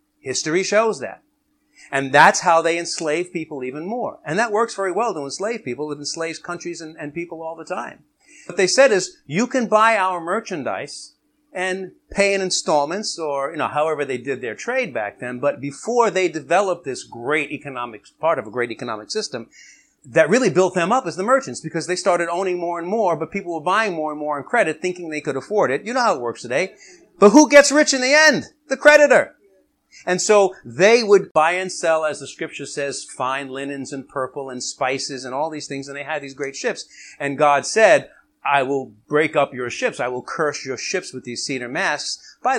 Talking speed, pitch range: 215 wpm, 145-225 Hz